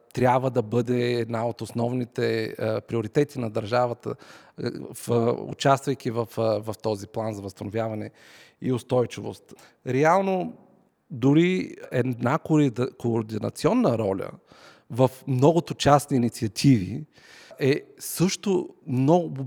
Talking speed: 105 wpm